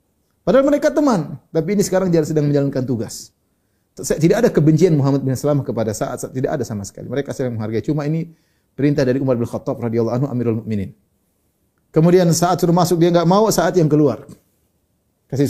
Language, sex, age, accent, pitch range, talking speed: Indonesian, male, 30-49, native, 140-180 Hz, 190 wpm